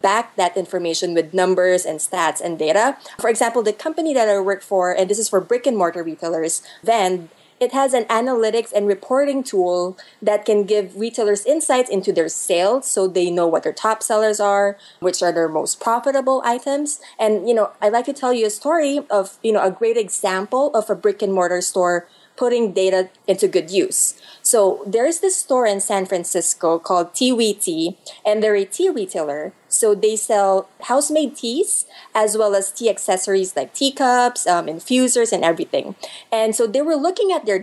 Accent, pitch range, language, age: Filipino, 185-250 Hz, English, 20-39